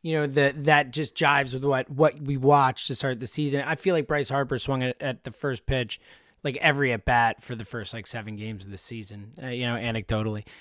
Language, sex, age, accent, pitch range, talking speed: English, male, 20-39, American, 140-195 Hz, 245 wpm